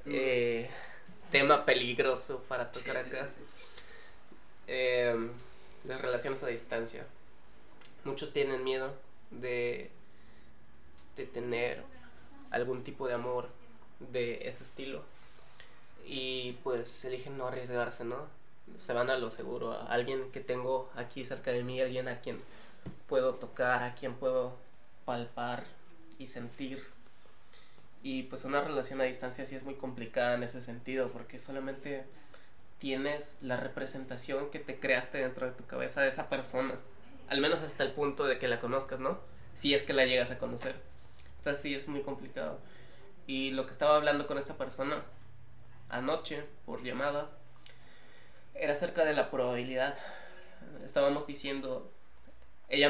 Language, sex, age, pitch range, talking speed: Spanish, male, 20-39, 125-135 Hz, 140 wpm